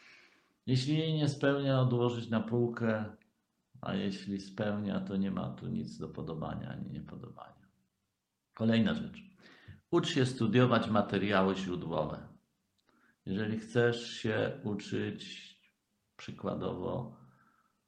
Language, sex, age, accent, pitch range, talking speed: Polish, male, 50-69, native, 95-115 Hz, 105 wpm